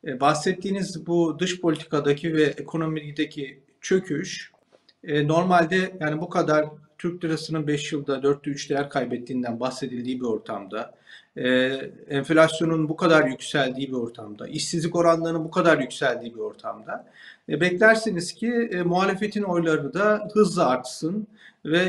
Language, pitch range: Turkish, 145-195 Hz